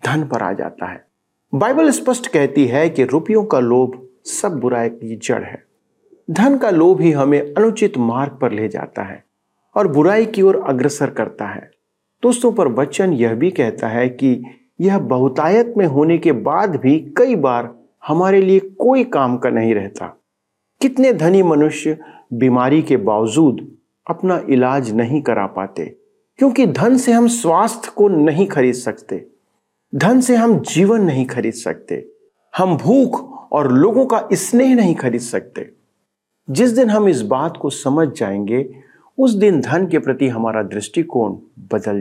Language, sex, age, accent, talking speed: Hindi, male, 40-59, native, 160 wpm